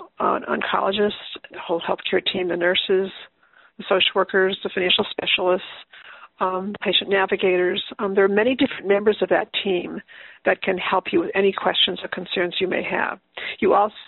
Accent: American